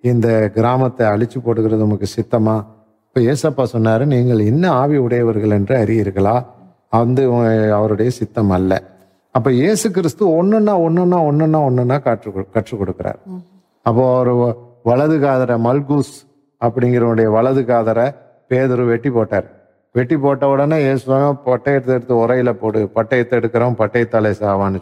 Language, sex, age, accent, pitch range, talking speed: Tamil, male, 50-69, native, 115-165 Hz, 125 wpm